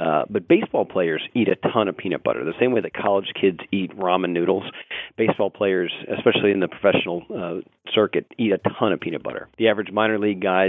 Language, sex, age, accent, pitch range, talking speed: English, male, 40-59, American, 90-105 Hz, 215 wpm